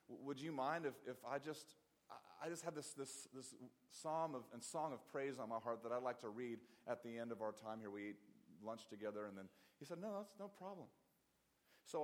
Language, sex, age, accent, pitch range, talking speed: English, male, 40-59, American, 115-145 Hz, 235 wpm